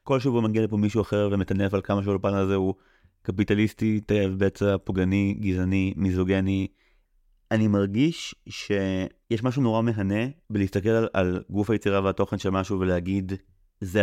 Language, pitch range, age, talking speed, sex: Hebrew, 95-110 Hz, 30-49, 145 wpm, male